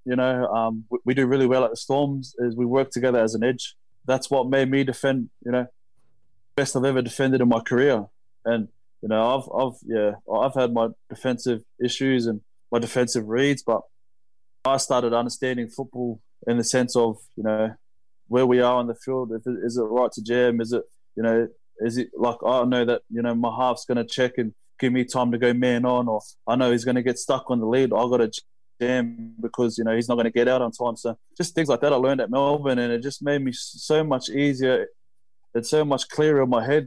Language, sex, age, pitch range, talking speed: English, male, 20-39, 115-135 Hz, 240 wpm